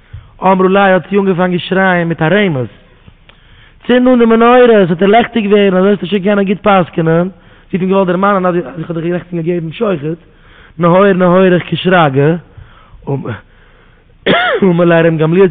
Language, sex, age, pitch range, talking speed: English, male, 20-39, 125-180 Hz, 125 wpm